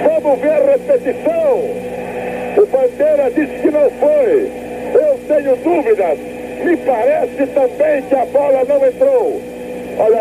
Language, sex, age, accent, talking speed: Portuguese, male, 60-79, Brazilian, 130 wpm